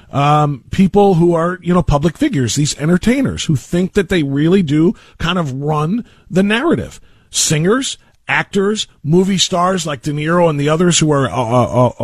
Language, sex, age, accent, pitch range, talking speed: English, male, 40-59, American, 145-205 Hz, 170 wpm